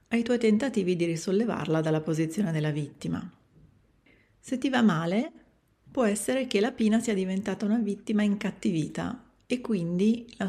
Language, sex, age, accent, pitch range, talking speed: Italian, female, 40-59, native, 165-225 Hz, 150 wpm